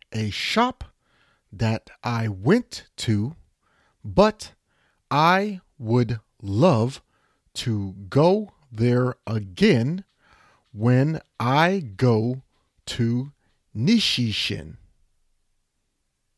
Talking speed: 70 wpm